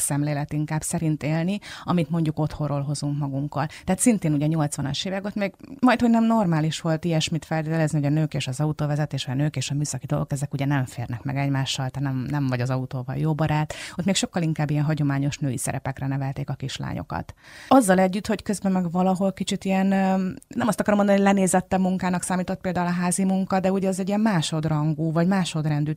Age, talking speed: 30-49, 200 wpm